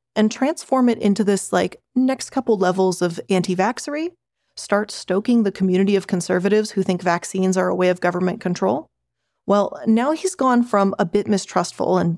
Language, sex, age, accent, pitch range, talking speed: English, female, 30-49, American, 180-230 Hz, 175 wpm